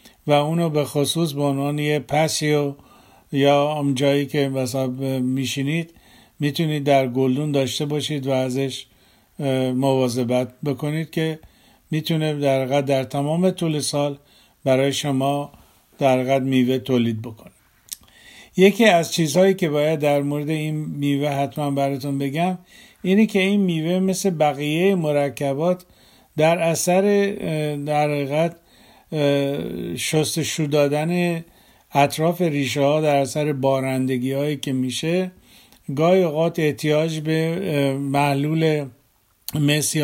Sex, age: male, 50-69